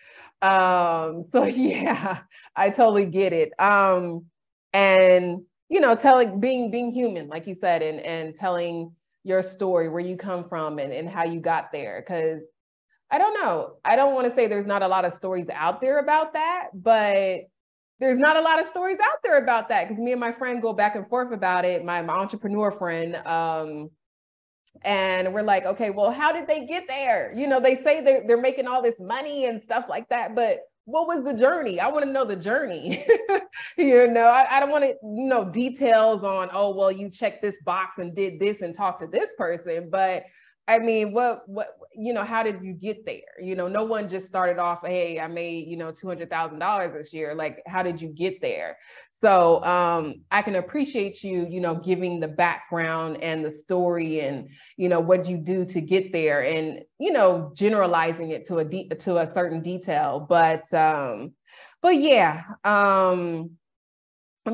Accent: American